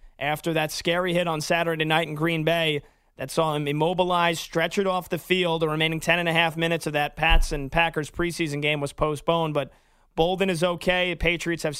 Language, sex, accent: English, male, American